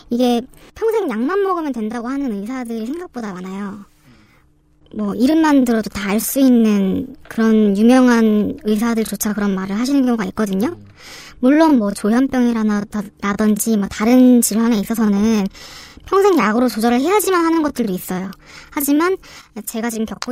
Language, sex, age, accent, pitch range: Korean, male, 20-39, native, 205-260 Hz